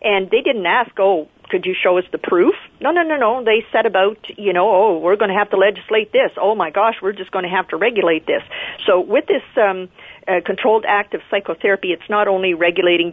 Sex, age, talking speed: female, 50-69, 240 wpm